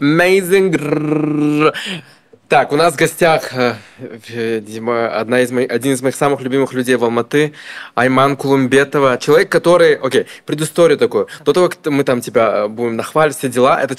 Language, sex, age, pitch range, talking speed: Russian, male, 20-39, 125-165 Hz, 150 wpm